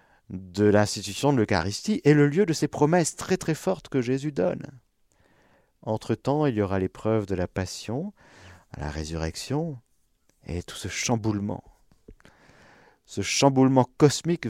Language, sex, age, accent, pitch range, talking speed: French, male, 50-69, French, 85-120 Hz, 140 wpm